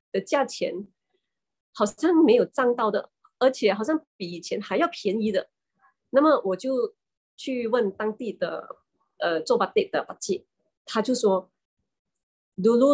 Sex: female